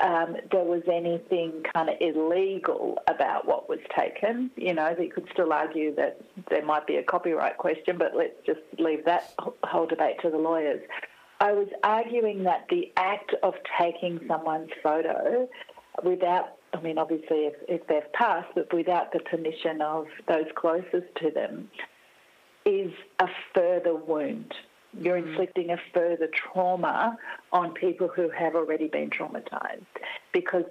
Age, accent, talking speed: 50-69, Australian, 150 wpm